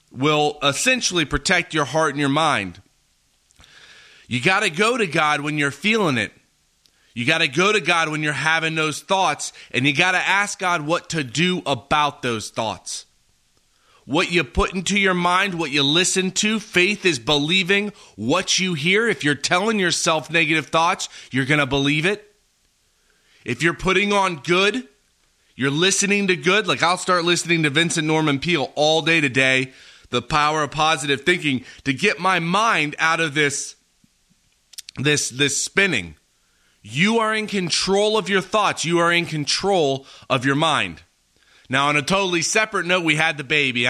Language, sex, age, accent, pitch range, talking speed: English, male, 30-49, American, 135-180 Hz, 170 wpm